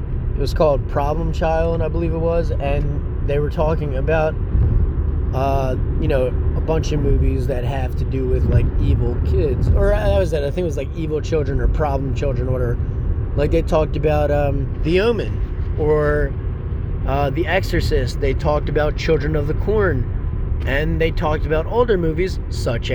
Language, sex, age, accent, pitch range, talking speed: English, male, 20-39, American, 75-120 Hz, 180 wpm